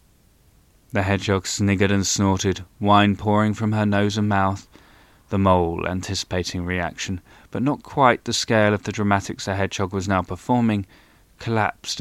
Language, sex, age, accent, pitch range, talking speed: English, male, 20-39, British, 90-105 Hz, 150 wpm